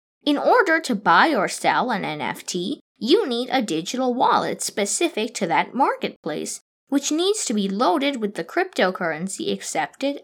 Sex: female